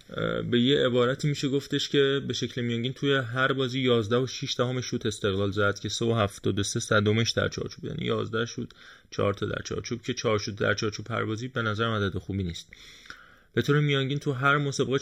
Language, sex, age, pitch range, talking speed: Persian, male, 20-39, 105-125 Hz, 210 wpm